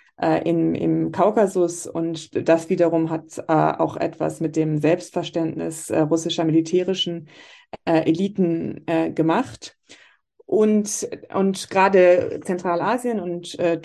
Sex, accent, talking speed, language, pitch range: female, German, 115 wpm, German, 165-185 Hz